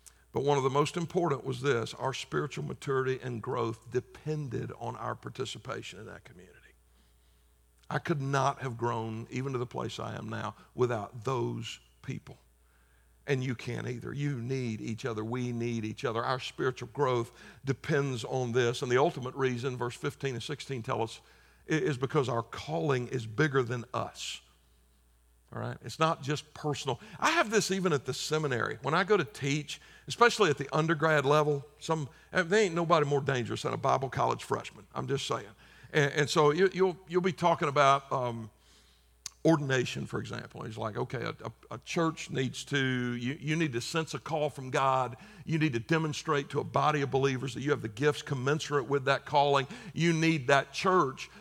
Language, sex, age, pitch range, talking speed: English, male, 60-79, 120-160 Hz, 190 wpm